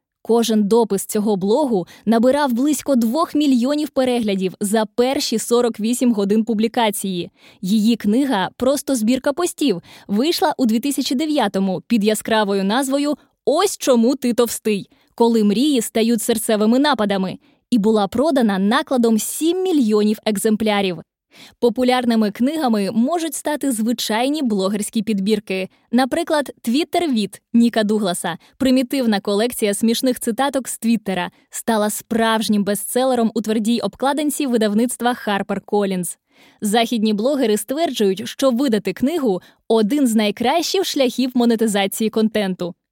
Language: Ukrainian